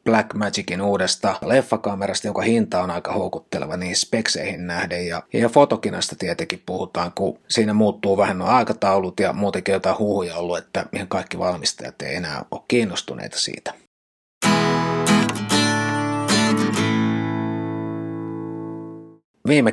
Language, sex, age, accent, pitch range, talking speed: Finnish, male, 30-49, native, 95-110 Hz, 115 wpm